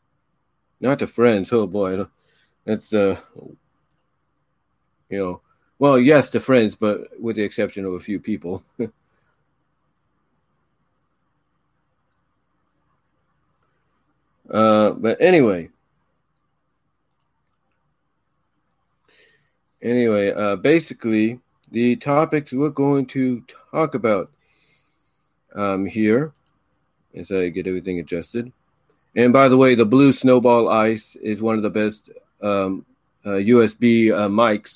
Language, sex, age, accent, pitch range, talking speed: English, male, 40-59, American, 100-130 Hz, 100 wpm